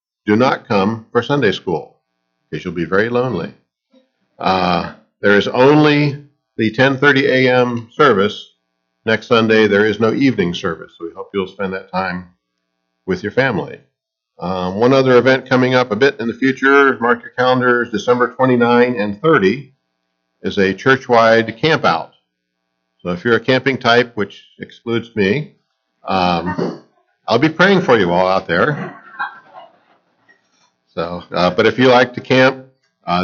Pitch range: 95-130 Hz